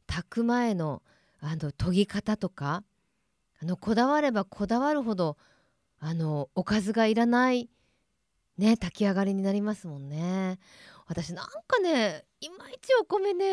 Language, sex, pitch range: Japanese, female, 175-235 Hz